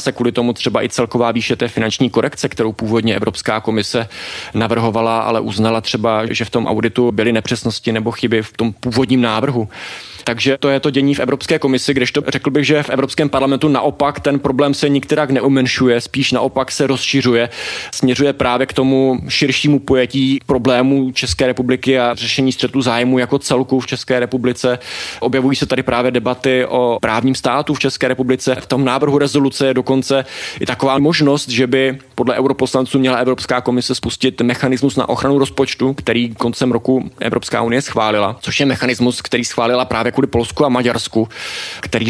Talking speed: 175 wpm